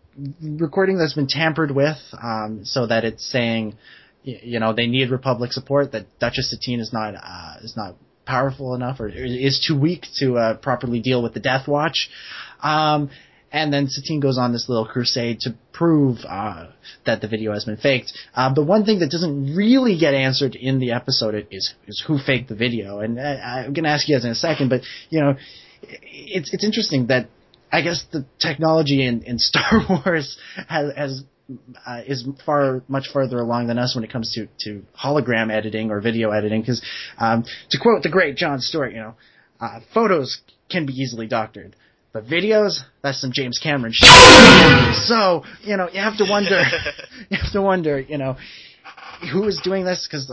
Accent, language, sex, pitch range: American, English, male, 120-160 Hz